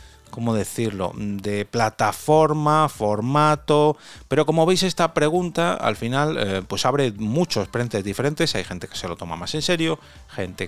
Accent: Spanish